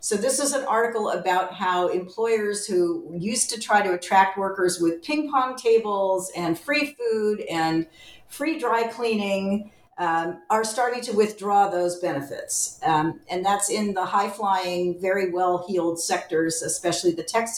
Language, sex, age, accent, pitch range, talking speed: English, female, 50-69, American, 180-230 Hz, 155 wpm